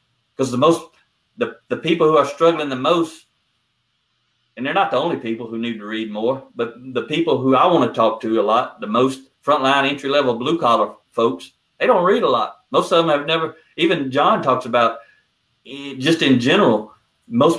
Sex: male